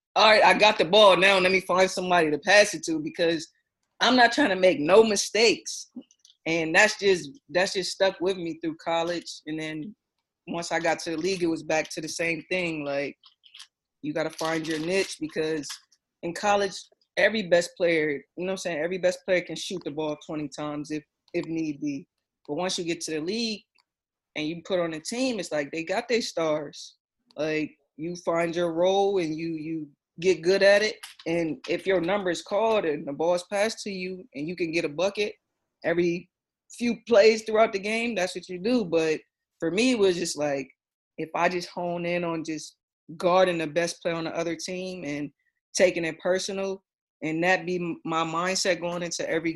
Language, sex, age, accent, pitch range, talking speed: English, female, 20-39, American, 160-190 Hz, 210 wpm